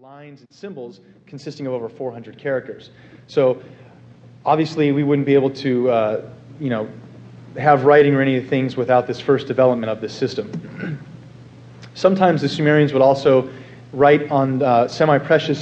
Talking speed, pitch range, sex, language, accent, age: 160 wpm, 125-145 Hz, male, English, American, 40-59